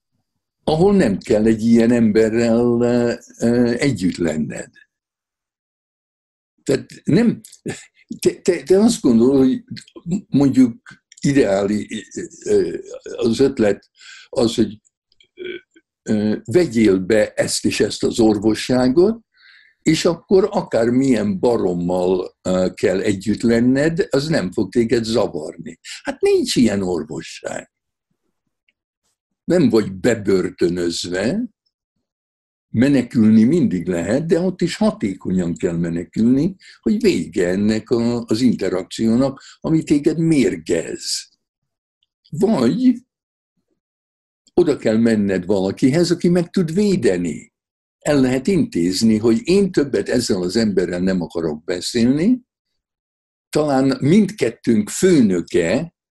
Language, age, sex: Hungarian, 60-79, male